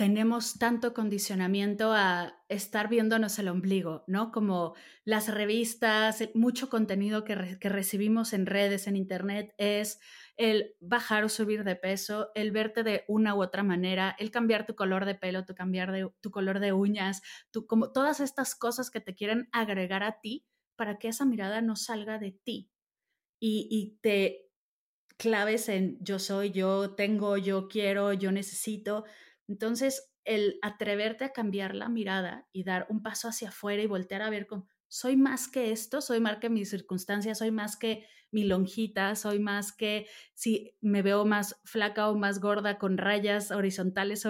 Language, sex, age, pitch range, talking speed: Spanish, female, 30-49, 200-225 Hz, 165 wpm